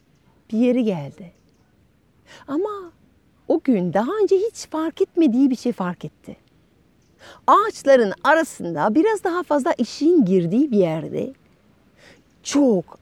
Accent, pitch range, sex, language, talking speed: native, 180-275 Hz, female, Turkish, 115 wpm